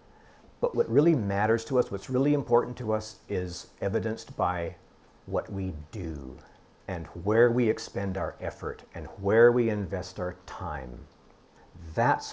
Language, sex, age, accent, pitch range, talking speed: English, male, 50-69, American, 90-125 Hz, 145 wpm